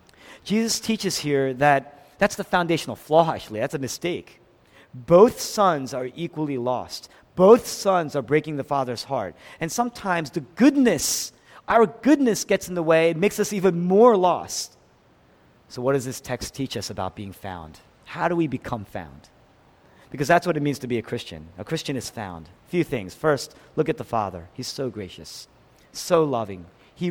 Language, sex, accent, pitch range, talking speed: English, male, American, 115-175 Hz, 180 wpm